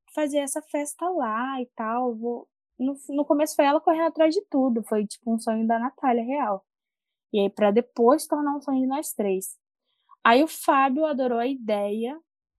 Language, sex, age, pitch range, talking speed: Portuguese, female, 10-29, 230-320 Hz, 175 wpm